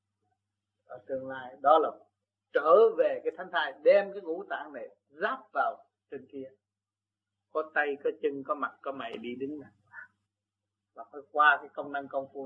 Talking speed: 185 wpm